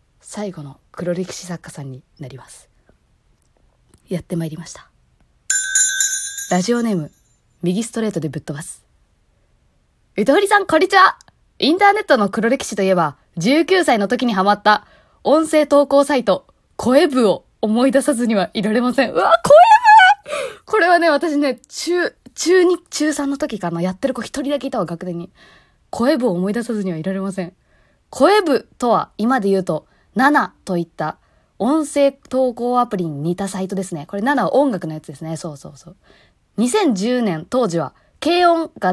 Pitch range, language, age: 185-295 Hz, Japanese, 20-39